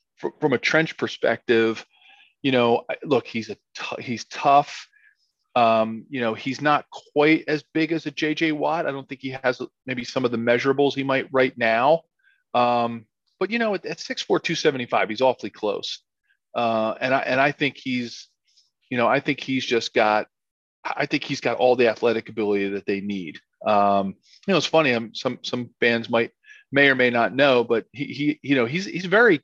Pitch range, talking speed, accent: 115-150 Hz, 205 wpm, American